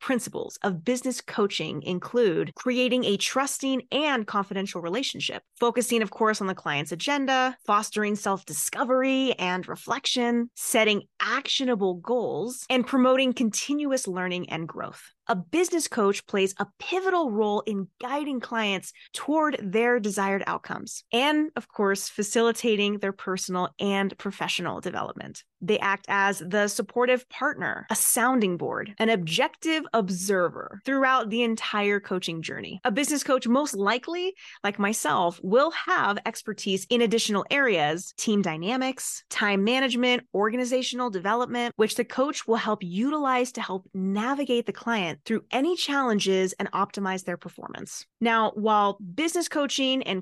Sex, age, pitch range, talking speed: female, 20-39, 200-255 Hz, 135 wpm